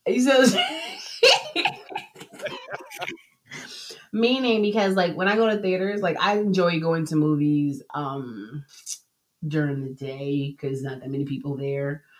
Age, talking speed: 30-49, 140 wpm